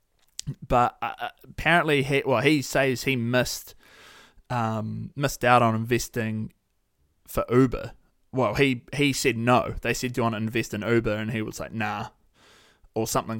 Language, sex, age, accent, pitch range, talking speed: English, male, 20-39, Australian, 110-130 Hz, 165 wpm